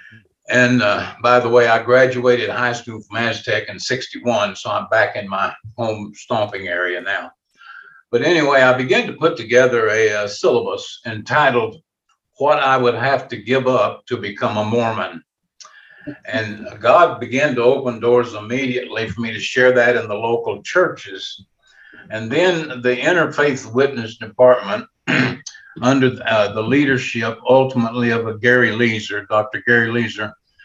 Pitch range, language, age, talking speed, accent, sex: 115-130 Hz, English, 60-79, 155 wpm, American, male